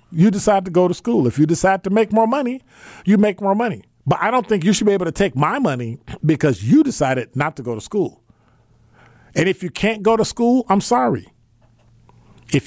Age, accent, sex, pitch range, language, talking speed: 50-69, American, male, 115-175 Hz, English, 225 wpm